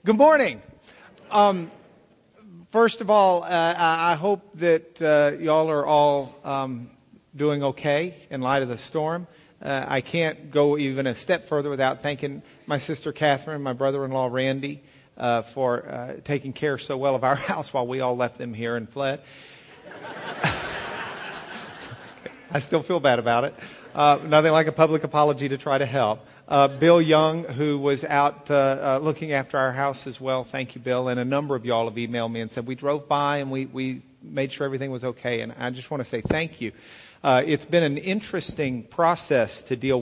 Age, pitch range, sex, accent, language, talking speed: 50-69, 125-150 Hz, male, American, English, 190 wpm